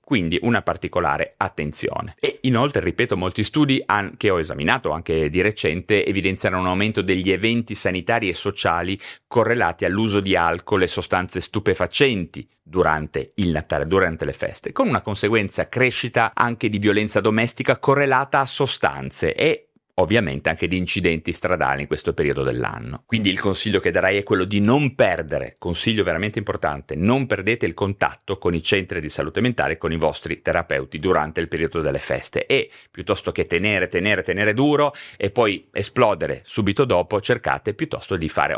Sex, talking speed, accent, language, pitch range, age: male, 165 wpm, native, Italian, 90-130 Hz, 30-49